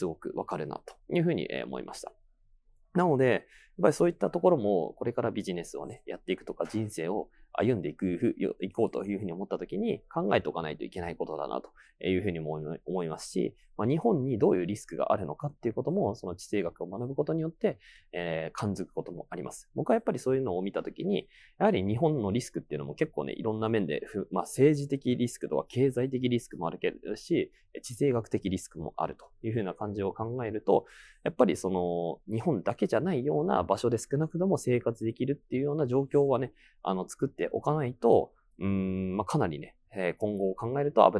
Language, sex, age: Japanese, male, 20-39